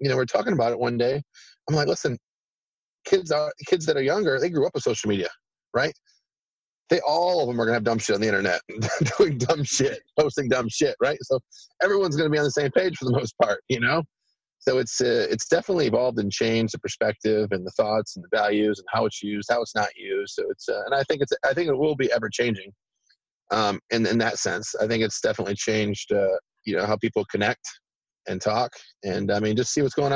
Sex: male